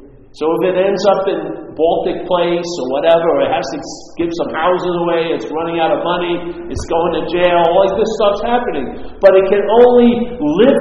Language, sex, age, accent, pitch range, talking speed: English, male, 50-69, American, 180-235 Hz, 200 wpm